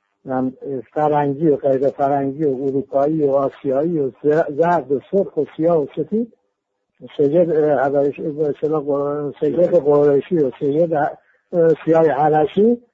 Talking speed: 105 wpm